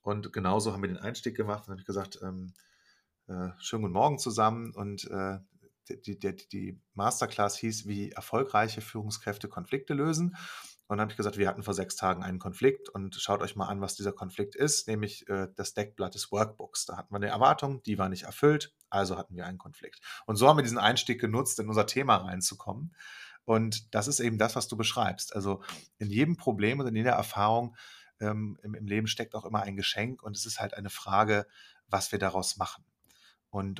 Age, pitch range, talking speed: 30-49, 100-115 Hz, 205 wpm